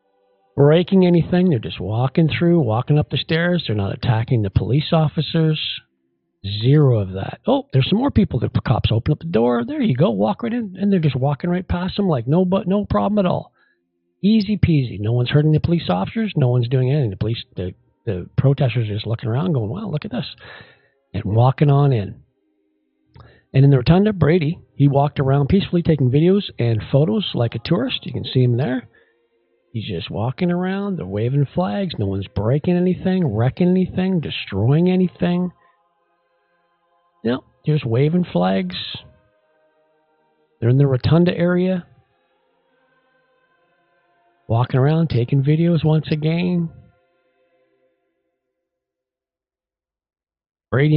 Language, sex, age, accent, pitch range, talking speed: English, male, 50-69, American, 115-175 Hz, 160 wpm